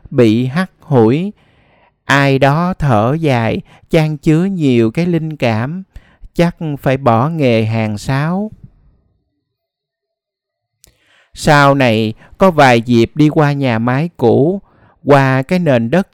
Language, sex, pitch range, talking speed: Vietnamese, male, 115-155 Hz, 125 wpm